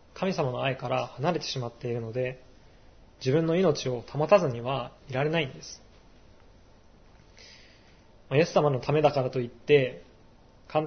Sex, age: male, 20-39